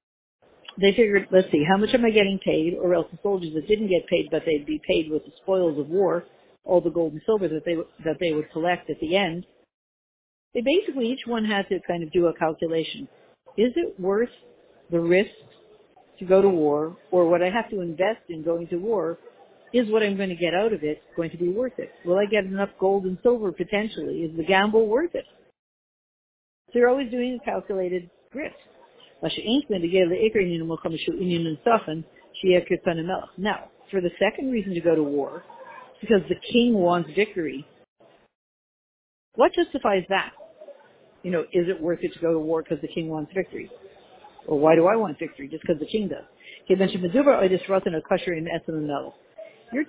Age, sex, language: 60-79, female, English